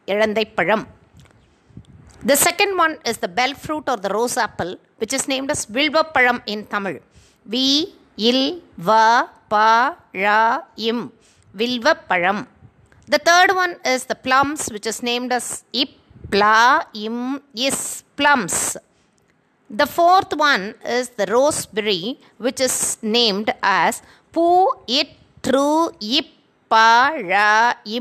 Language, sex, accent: Tamil, female, native